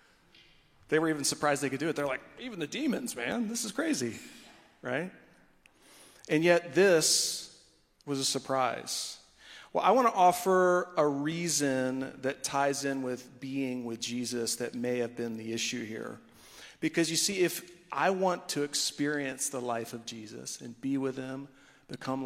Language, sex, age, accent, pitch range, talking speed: English, male, 40-59, American, 125-155 Hz, 165 wpm